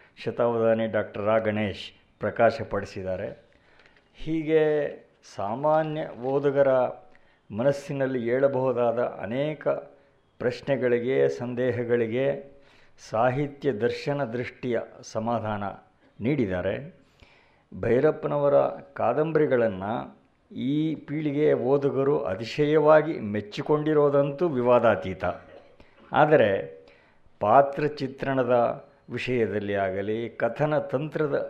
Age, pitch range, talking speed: 50-69, 115-145 Hz, 60 wpm